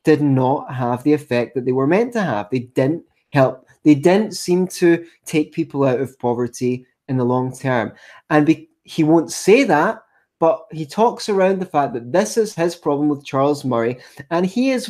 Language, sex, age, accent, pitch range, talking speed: English, male, 20-39, British, 130-175 Hz, 200 wpm